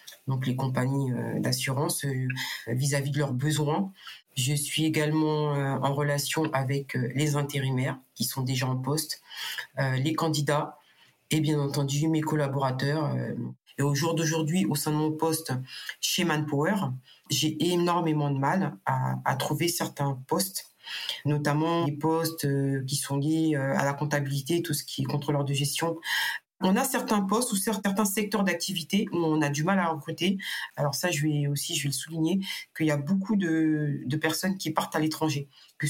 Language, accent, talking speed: French, French, 165 wpm